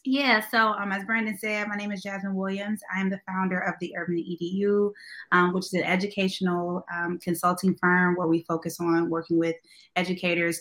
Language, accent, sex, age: English, American, female, 20-39